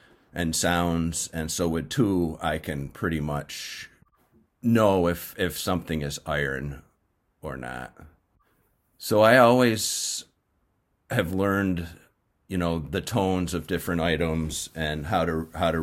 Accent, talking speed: American, 135 wpm